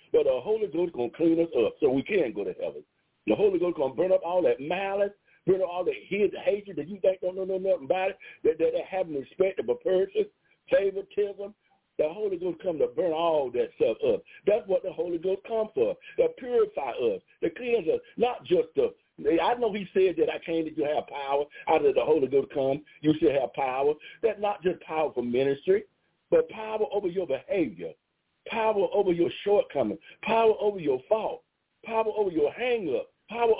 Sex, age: male, 60-79